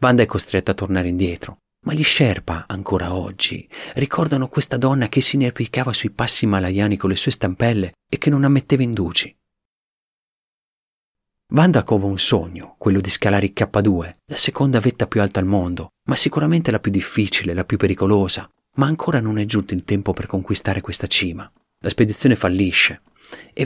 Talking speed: 170 wpm